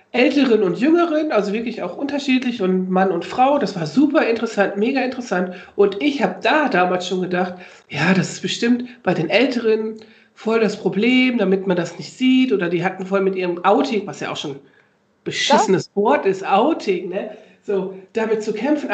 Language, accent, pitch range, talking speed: German, German, 190-240 Hz, 185 wpm